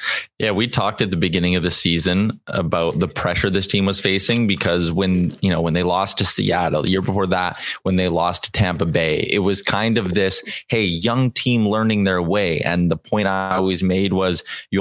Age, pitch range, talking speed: 20-39, 90-110 Hz, 220 wpm